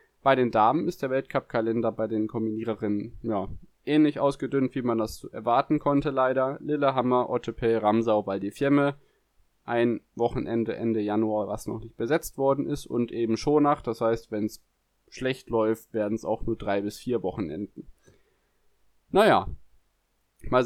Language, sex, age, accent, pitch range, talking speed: German, male, 20-39, German, 110-135 Hz, 150 wpm